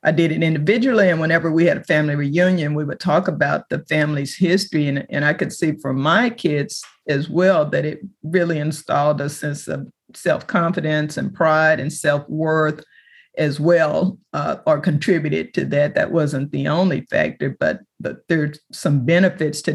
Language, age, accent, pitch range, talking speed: English, 50-69, American, 150-175 Hz, 175 wpm